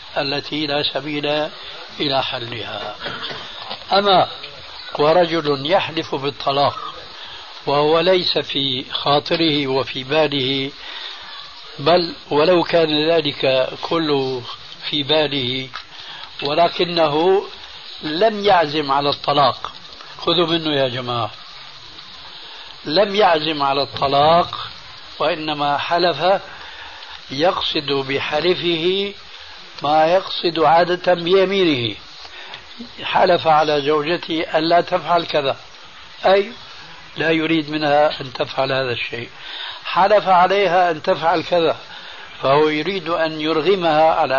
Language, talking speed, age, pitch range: Arabic, 90 wpm, 60-79, 140-175 Hz